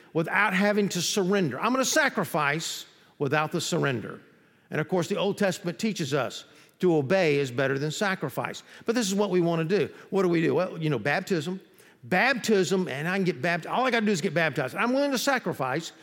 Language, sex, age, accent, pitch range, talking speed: English, male, 50-69, American, 160-210 Hz, 220 wpm